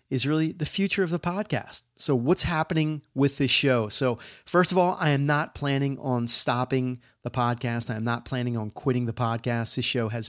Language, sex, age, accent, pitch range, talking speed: English, male, 30-49, American, 115-145 Hz, 210 wpm